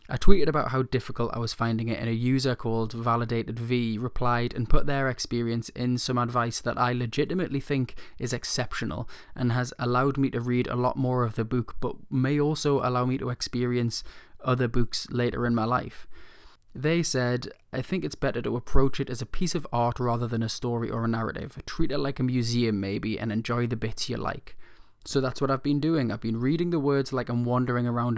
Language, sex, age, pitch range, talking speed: English, male, 20-39, 115-135 Hz, 215 wpm